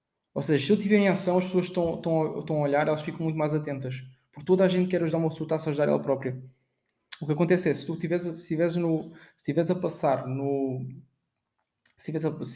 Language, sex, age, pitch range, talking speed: Portuguese, male, 20-39, 140-170 Hz, 200 wpm